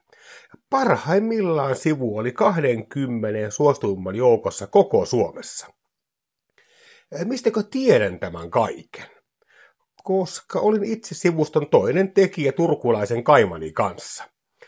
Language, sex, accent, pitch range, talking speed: Finnish, male, native, 120-195 Hz, 85 wpm